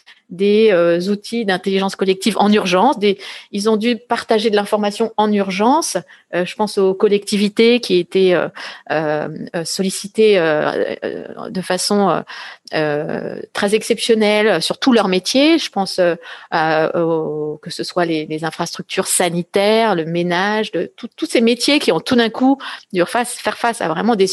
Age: 30-49